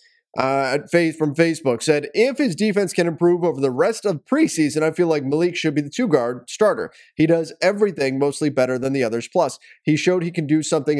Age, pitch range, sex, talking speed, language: 30-49, 135-180 Hz, male, 220 wpm, English